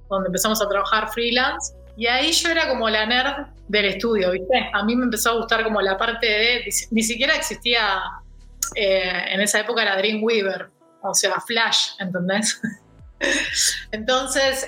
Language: Spanish